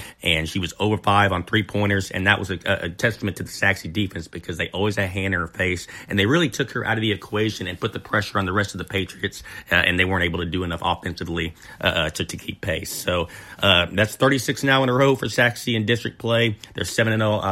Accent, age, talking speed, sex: American, 30-49, 265 wpm, male